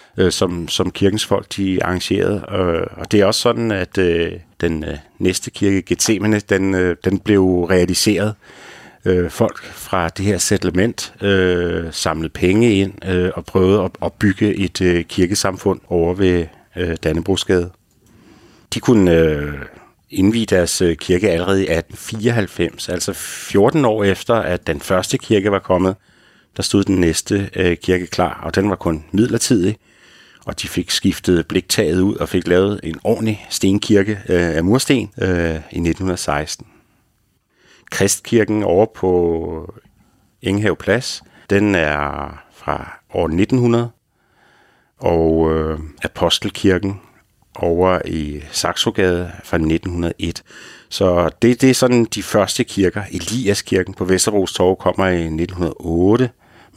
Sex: male